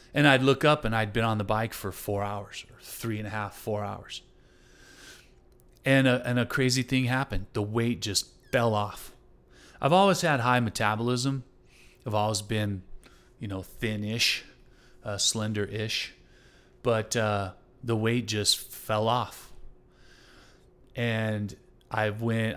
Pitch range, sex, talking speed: 105-130 Hz, male, 145 wpm